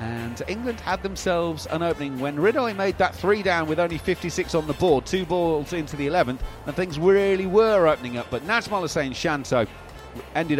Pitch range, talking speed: 120-175 Hz, 195 wpm